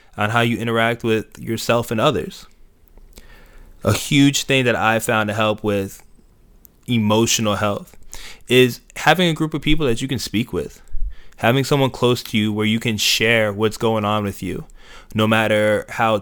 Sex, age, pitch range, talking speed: male, 20-39, 105-120 Hz, 175 wpm